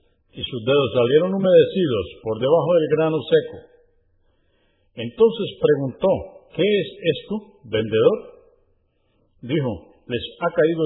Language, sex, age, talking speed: Spanish, male, 50-69, 110 wpm